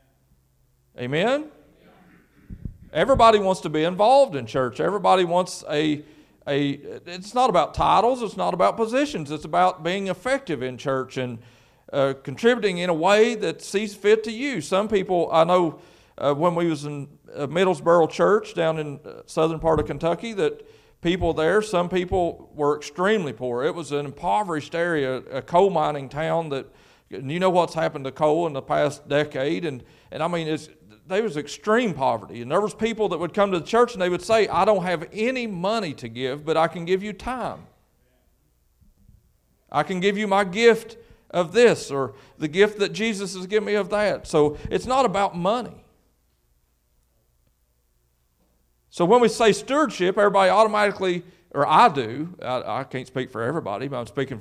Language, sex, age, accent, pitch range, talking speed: English, male, 40-59, American, 135-200 Hz, 180 wpm